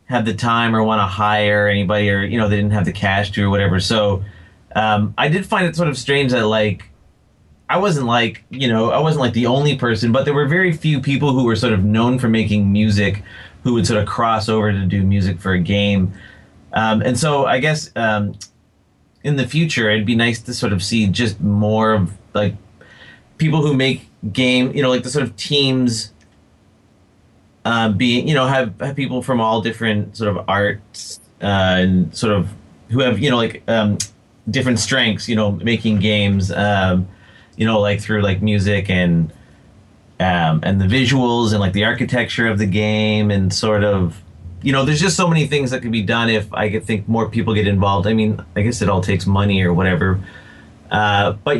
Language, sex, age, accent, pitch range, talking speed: English, male, 30-49, American, 100-120 Hz, 210 wpm